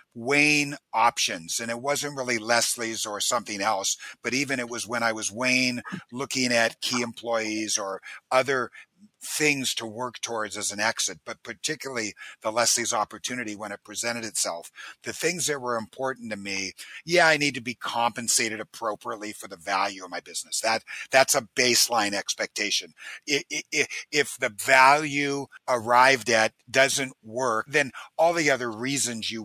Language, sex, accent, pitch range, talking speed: English, male, American, 115-135 Hz, 160 wpm